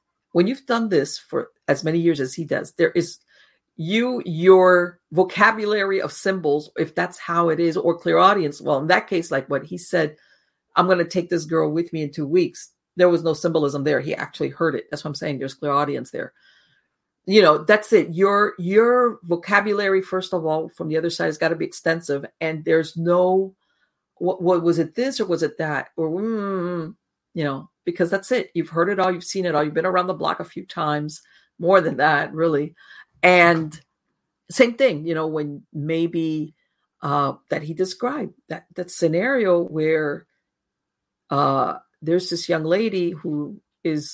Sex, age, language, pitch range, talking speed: female, 50-69, English, 160-185 Hz, 190 wpm